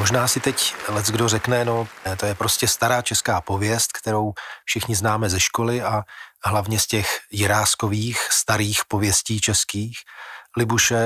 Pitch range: 105-120 Hz